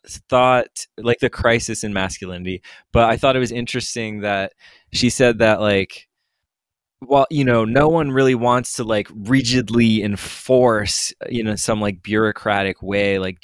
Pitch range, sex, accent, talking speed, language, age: 95-110 Hz, male, American, 155 wpm, English, 20-39